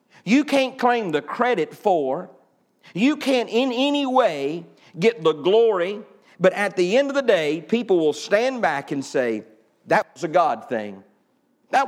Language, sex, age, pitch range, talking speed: English, male, 50-69, 180-255 Hz, 165 wpm